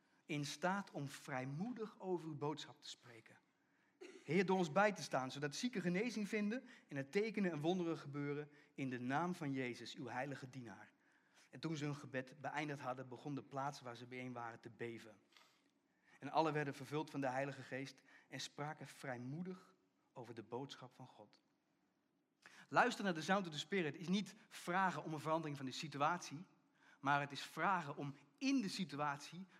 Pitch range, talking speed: 140-190 Hz, 180 wpm